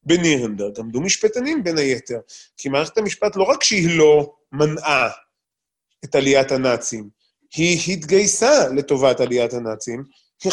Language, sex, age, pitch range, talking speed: Hebrew, male, 20-39, 130-195 Hz, 125 wpm